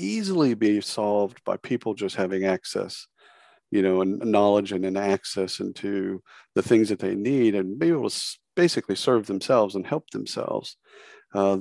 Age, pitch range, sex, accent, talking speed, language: 50-69, 95-110 Hz, male, American, 165 wpm, English